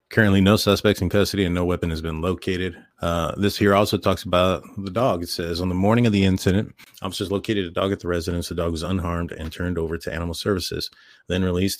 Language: English